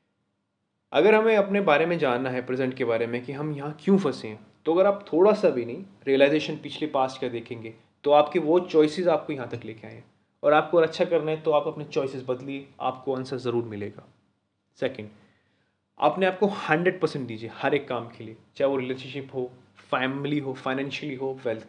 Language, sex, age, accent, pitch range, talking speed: Hindi, male, 30-49, native, 120-155 Hz, 200 wpm